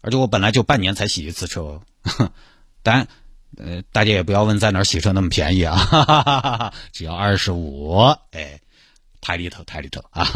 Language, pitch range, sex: Chinese, 100-135 Hz, male